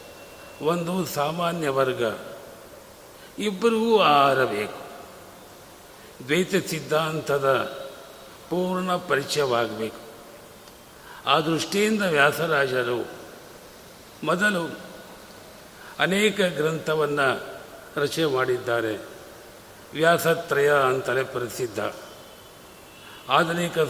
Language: Kannada